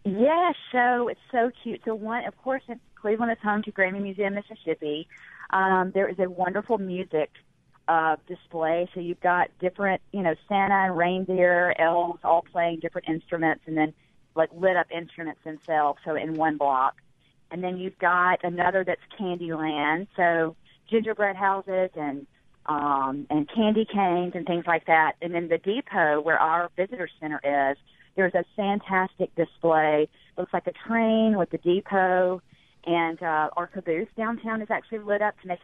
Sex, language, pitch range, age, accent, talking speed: female, English, 155-195 Hz, 40-59, American, 170 wpm